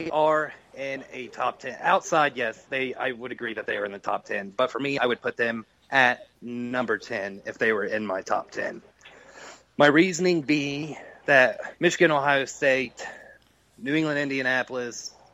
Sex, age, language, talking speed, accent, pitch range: male, 30-49, English, 175 wpm, American, 130-165 Hz